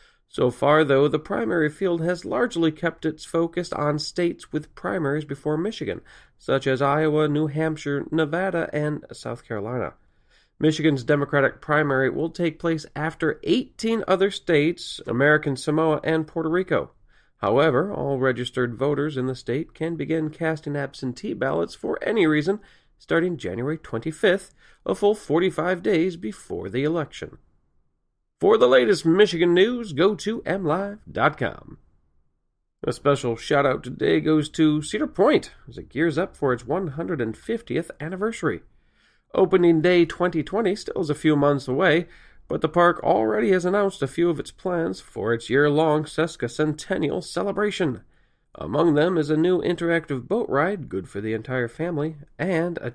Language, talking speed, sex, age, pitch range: English, 145 wpm, male, 40-59, 140-175 Hz